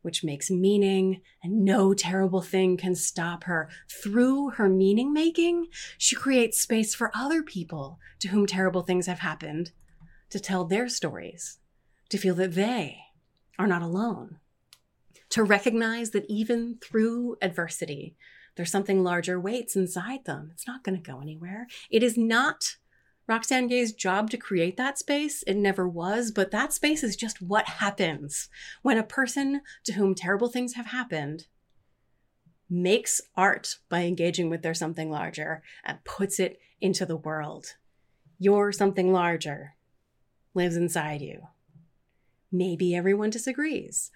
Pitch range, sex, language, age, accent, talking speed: 175-235 Hz, female, English, 30-49, American, 145 wpm